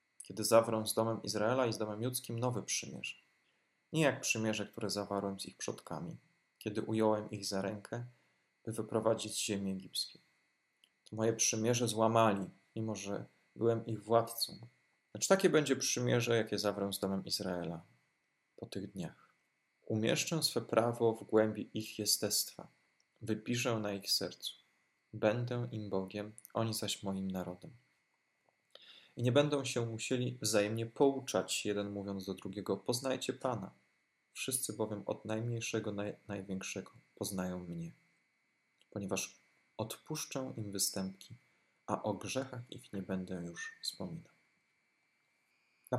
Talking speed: 135 wpm